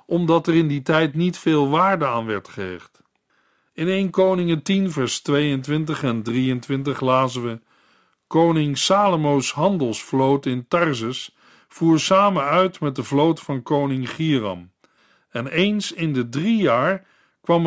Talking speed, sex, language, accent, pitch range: 145 wpm, male, Dutch, Dutch, 130-170 Hz